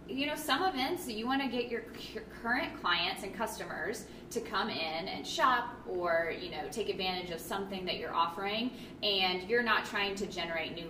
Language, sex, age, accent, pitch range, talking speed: English, female, 20-39, American, 175-220 Hz, 195 wpm